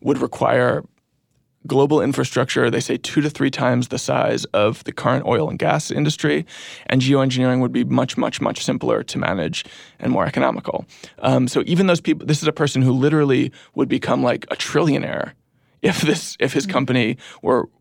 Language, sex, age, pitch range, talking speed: English, male, 20-39, 125-140 Hz, 175 wpm